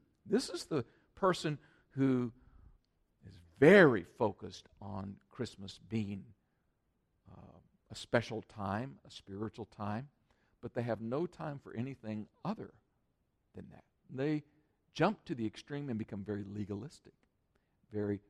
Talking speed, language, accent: 125 wpm, English, American